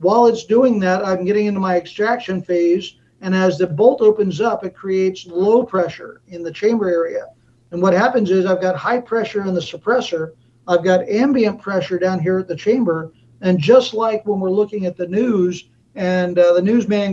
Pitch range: 180-210 Hz